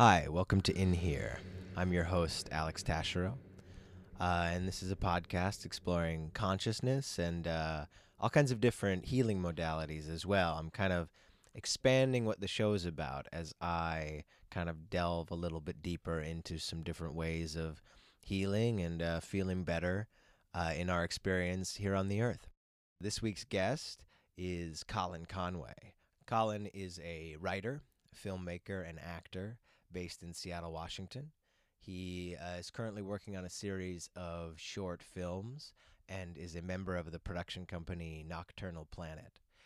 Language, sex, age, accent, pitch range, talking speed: English, male, 20-39, American, 85-100 Hz, 155 wpm